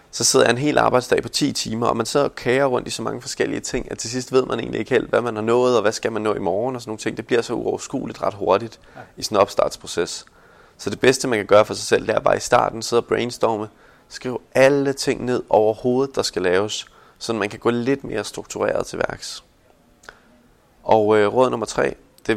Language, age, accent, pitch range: Danish, 20-39, native, 105-125 Hz